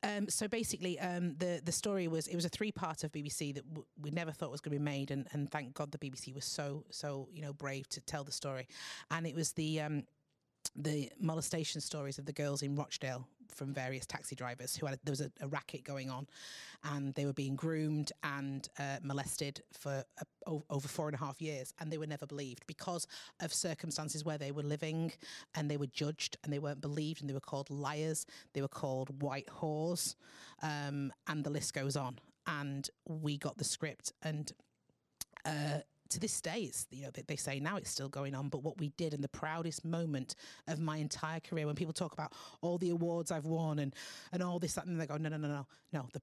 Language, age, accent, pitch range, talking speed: English, 30-49, British, 140-160 Hz, 225 wpm